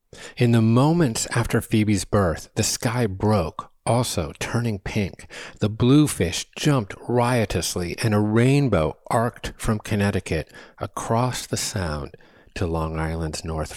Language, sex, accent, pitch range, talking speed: English, male, American, 85-105 Hz, 125 wpm